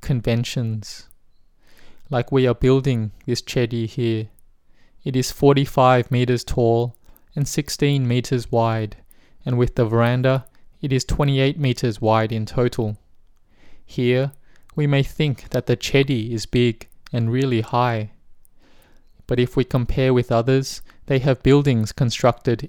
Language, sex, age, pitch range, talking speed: English, male, 20-39, 115-130 Hz, 130 wpm